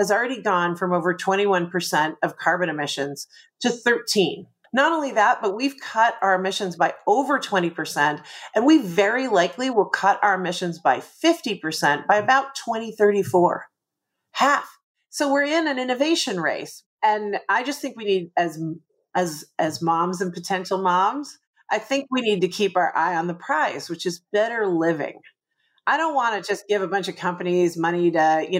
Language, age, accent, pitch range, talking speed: English, 40-59, American, 180-250 Hz, 175 wpm